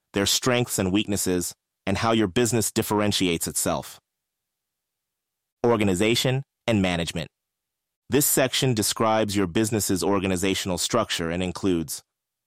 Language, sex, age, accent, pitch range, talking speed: English, male, 30-49, American, 90-115 Hz, 105 wpm